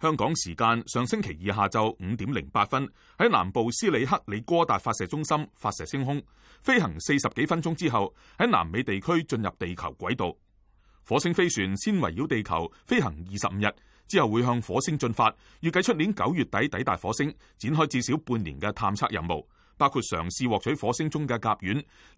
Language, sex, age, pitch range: Chinese, male, 30-49, 100-150 Hz